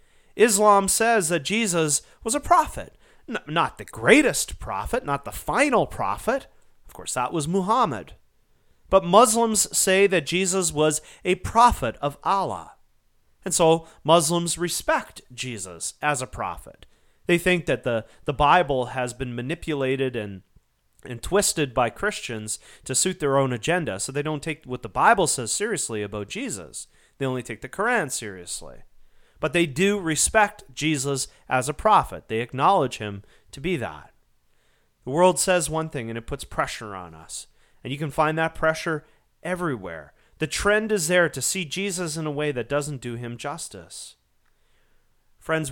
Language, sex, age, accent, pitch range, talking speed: English, male, 30-49, American, 125-180 Hz, 160 wpm